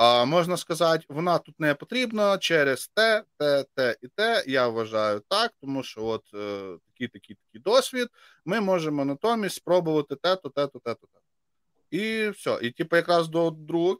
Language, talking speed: Ukrainian, 180 wpm